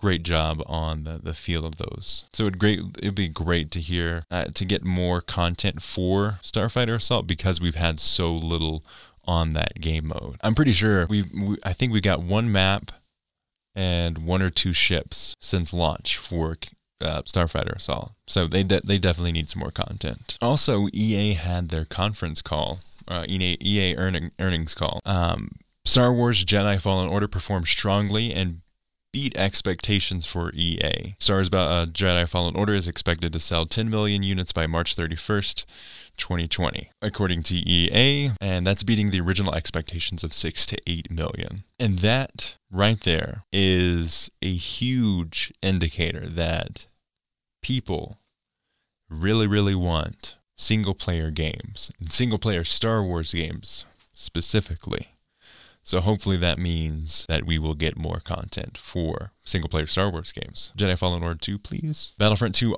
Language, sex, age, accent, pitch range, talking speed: English, male, 20-39, American, 85-100 Hz, 155 wpm